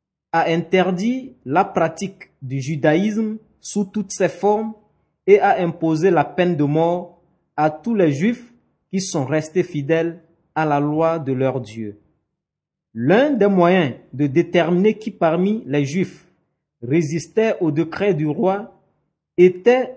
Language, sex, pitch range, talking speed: French, male, 155-200 Hz, 140 wpm